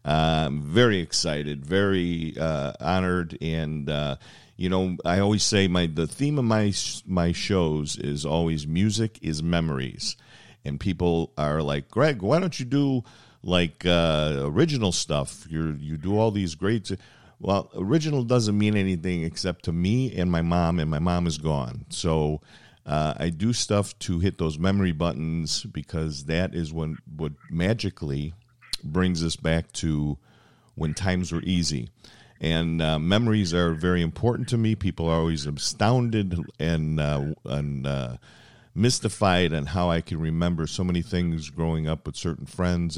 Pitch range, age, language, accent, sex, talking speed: 80-100 Hz, 50-69, English, American, male, 160 wpm